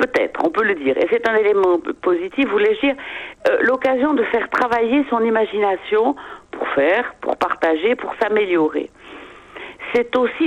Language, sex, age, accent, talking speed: French, female, 50-69, French, 160 wpm